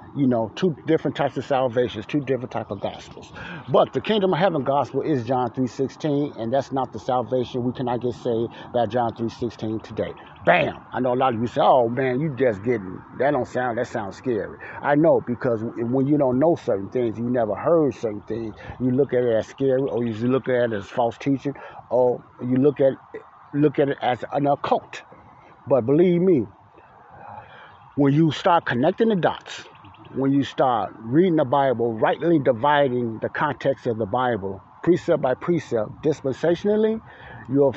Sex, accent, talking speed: male, American, 185 wpm